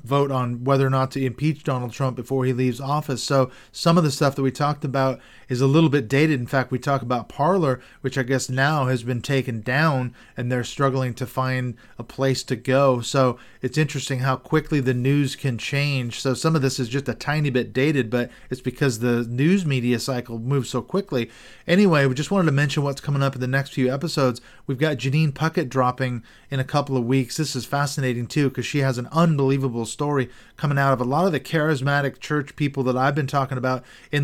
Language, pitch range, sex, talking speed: English, 125-145 Hz, male, 230 wpm